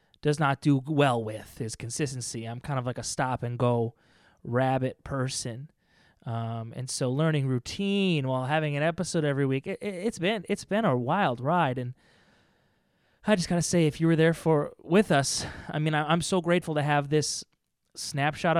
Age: 20-39